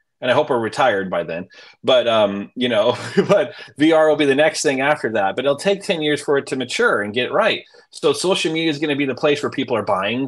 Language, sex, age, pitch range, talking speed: English, male, 30-49, 115-150 Hz, 265 wpm